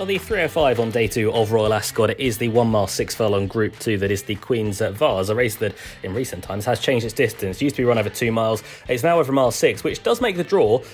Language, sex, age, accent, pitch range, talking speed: English, male, 20-39, British, 100-130 Hz, 275 wpm